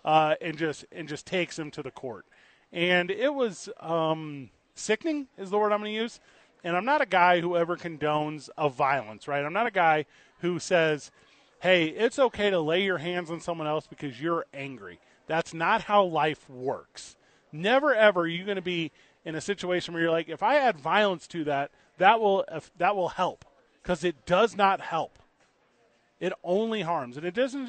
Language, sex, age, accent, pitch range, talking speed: English, male, 30-49, American, 160-200 Hz, 215 wpm